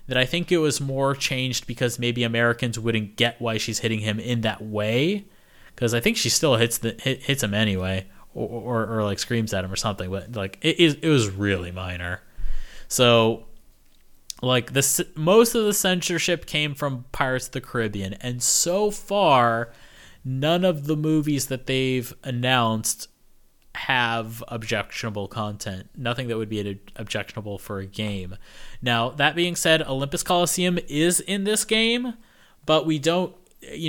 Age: 20-39